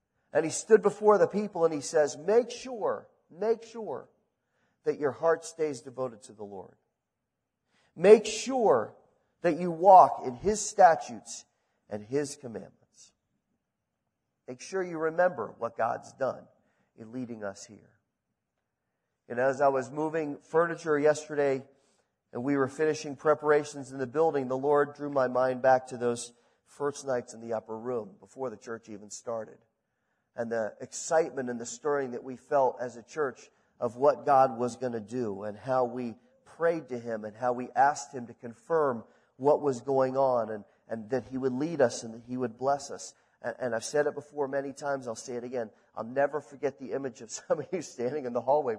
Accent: American